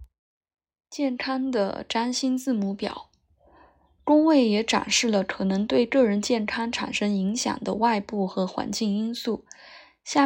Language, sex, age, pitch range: Chinese, female, 20-39, 200-255 Hz